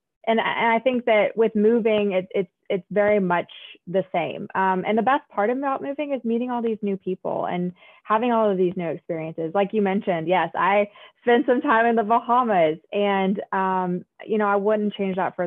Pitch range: 180-225 Hz